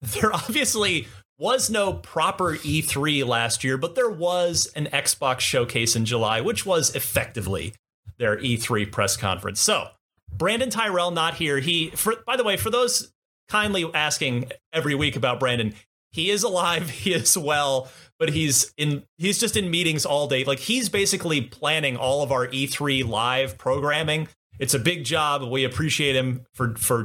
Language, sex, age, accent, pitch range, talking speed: English, male, 30-49, American, 120-170 Hz, 165 wpm